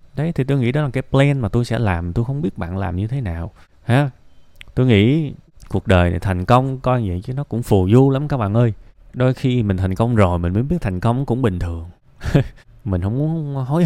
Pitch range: 95-130 Hz